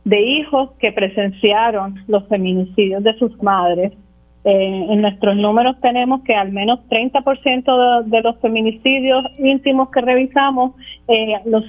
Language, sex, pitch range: Spanish, female, 195-235 Hz